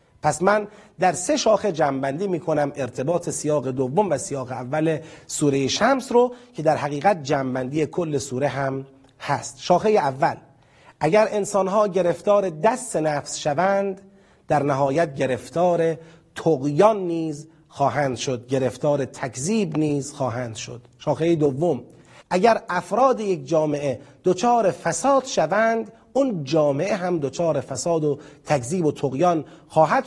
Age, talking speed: 40-59, 130 wpm